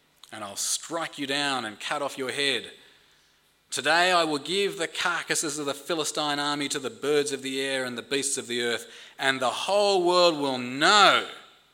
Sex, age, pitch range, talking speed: male, 30-49, 125-175 Hz, 195 wpm